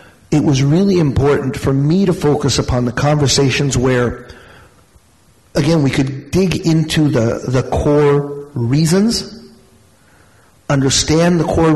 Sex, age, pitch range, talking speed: male, 50-69, 130-165 Hz, 120 wpm